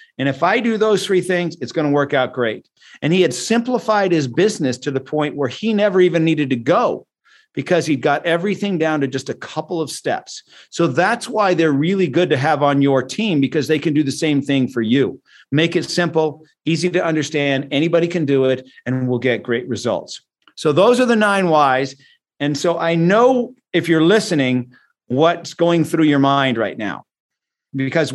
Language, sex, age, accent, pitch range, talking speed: English, male, 50-69, American, 145-180 Hz, 205 wpm